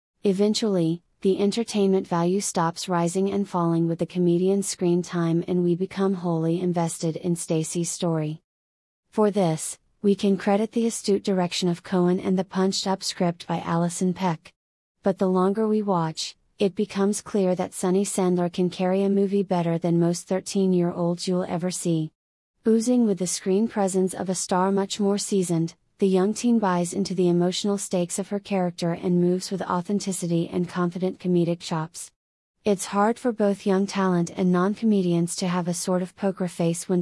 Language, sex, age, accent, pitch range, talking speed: English, female, 30-49, American, 170-195 Hz, 170 wpm